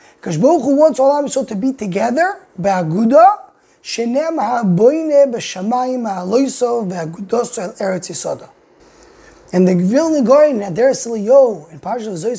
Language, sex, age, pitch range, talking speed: English, male, 20-39, 220-305 Hz, 90 wpm